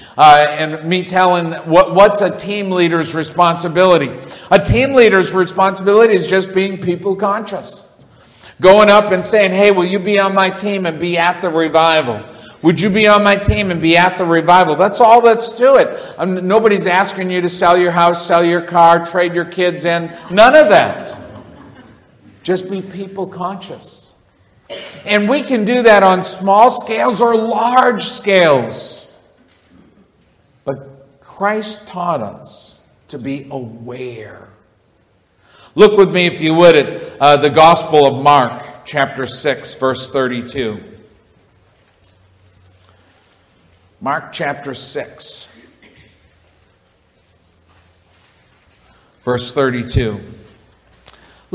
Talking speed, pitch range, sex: 125 wpm, 125-190 Hz, male